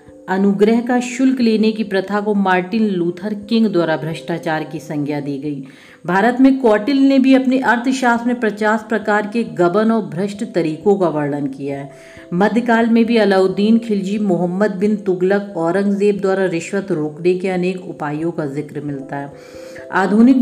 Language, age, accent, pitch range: Hindi, 50-69, native, 175-235 Hz